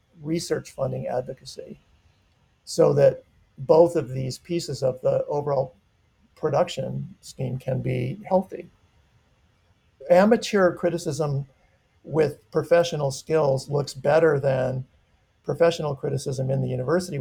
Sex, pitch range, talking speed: male, 130-160 Hz, 105 wpm